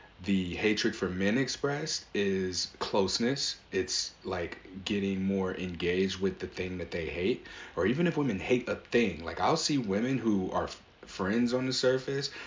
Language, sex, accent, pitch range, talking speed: English, male, American, 95-125 Hz, 170 wpm